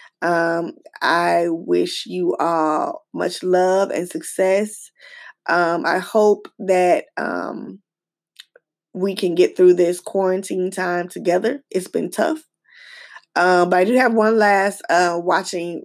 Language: English